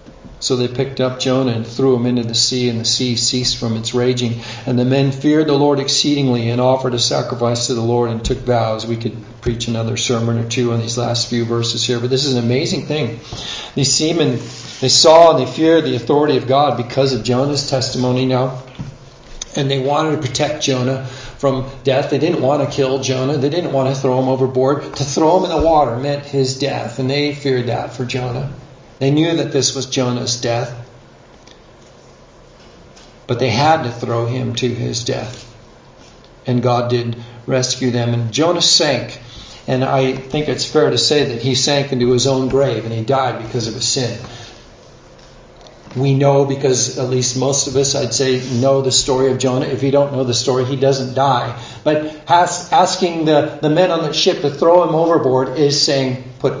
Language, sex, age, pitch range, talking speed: English, male, 50-69, 120-140 Hz, 200 wpm